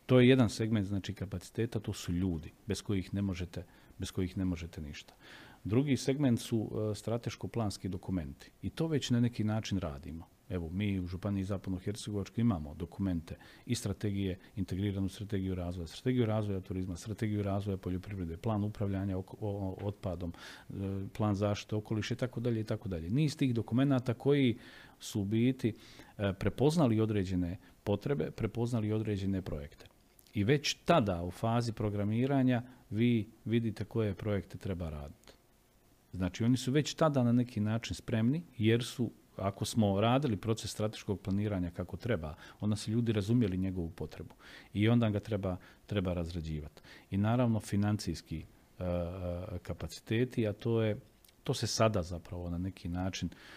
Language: Croatian